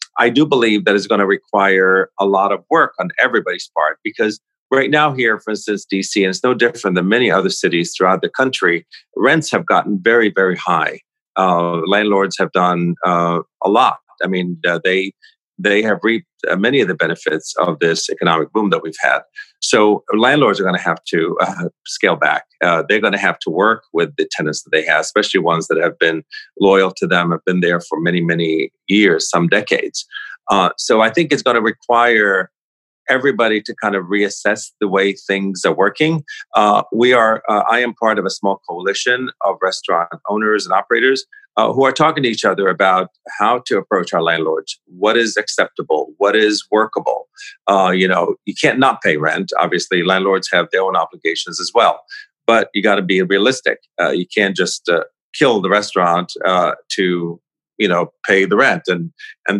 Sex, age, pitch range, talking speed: male, 40-59, 95-140 Hz, 195 wpm